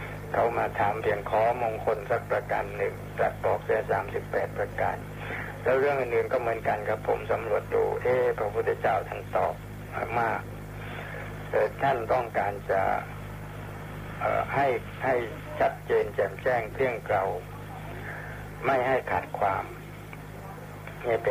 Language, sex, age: Thai, male, 60-79